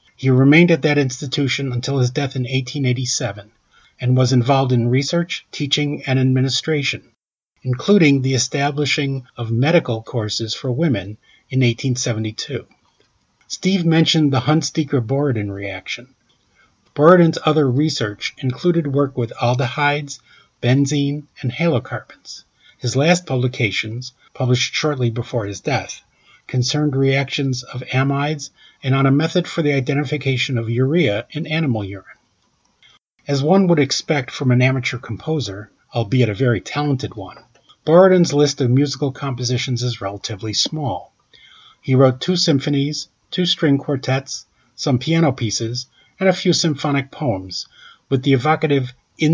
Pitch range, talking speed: 120-145 Hz, 130 wpm